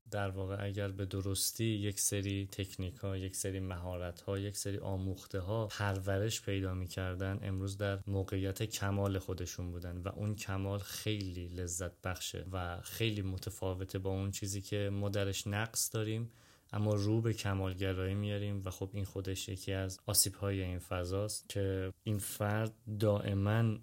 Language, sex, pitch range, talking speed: Persian, male, 95-105 Hz, 160 wpm